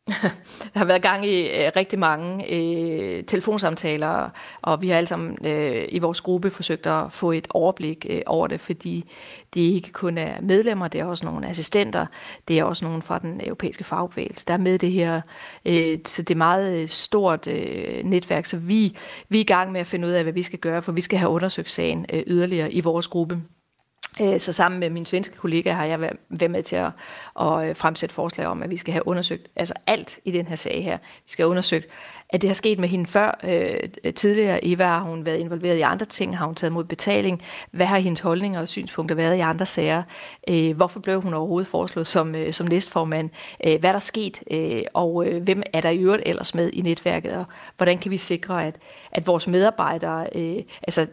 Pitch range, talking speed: 165-190 Hz, 210 wpm